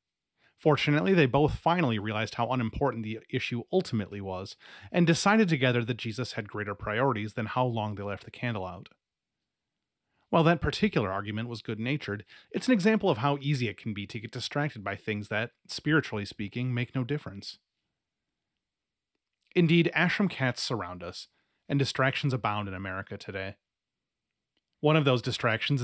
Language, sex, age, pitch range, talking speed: English, male, 30-49, 105-145 Hz, 160 wpm